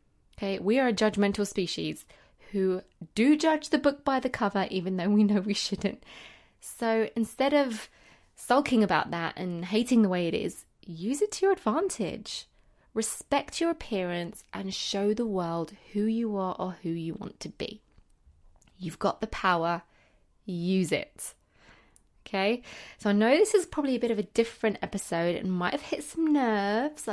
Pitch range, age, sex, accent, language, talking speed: 185-235 Hz, 20-39, female, British, English, 175 wpm